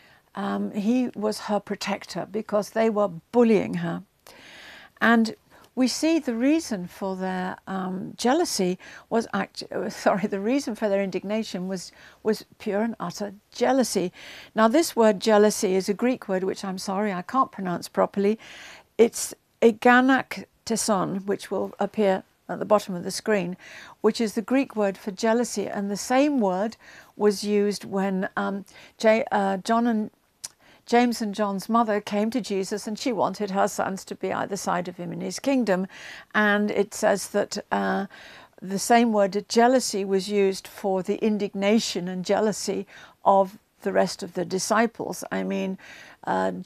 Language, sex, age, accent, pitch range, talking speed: English, female, 60-79, British, 190-220 Hz, 160 wpm